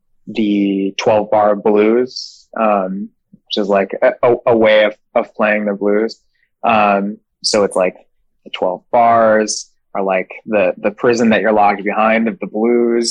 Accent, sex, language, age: American, male, English, 20-39